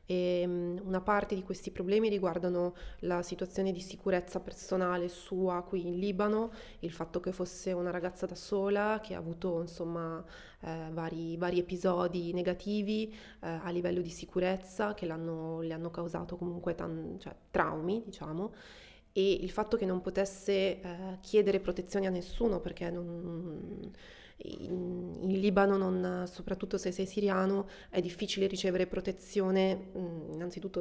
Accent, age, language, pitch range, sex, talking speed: native, 20-39, Italian, 175-195 Hz, female, 140 wpm